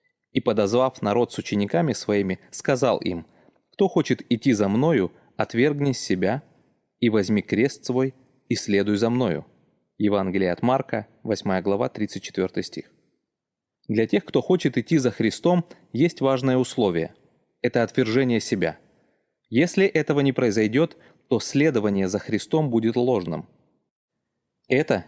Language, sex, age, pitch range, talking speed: Russian, male, 30-49, 110-140 Hz, 130 wpm